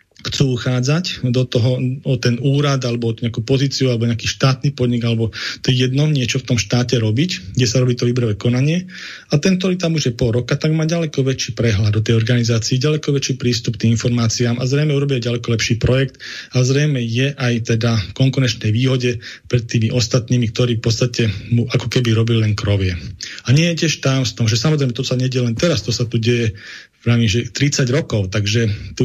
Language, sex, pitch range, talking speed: Slovak, male, 120-140 Hz, 200 wpm